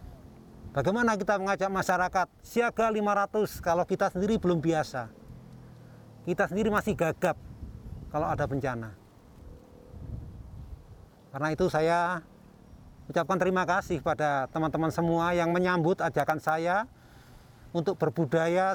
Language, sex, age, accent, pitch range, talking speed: Indonesian, male, 30-49, native, 140-195 Hz, 105 wpm